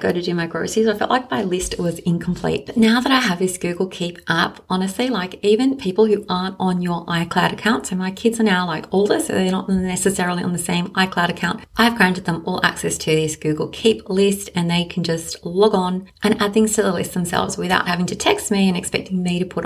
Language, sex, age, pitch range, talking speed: English, female, 30-49, 175-210 Hz, 245 wpm